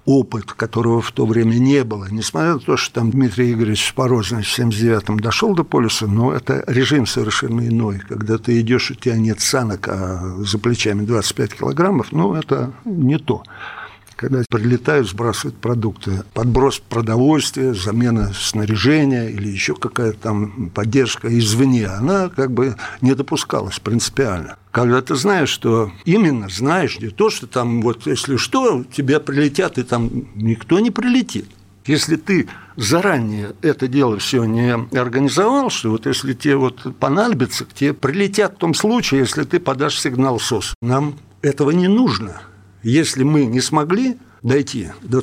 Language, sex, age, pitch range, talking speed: Russian, male, 60-79, 110-140 Hz, 155 wpm